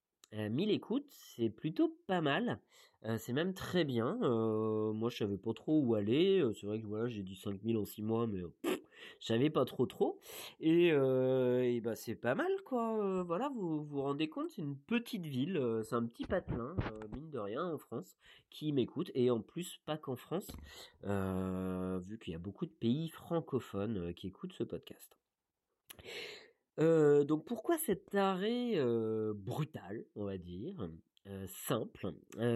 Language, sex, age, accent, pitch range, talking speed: French, male, 30-49, French, 110-175 Hz, 180 wpm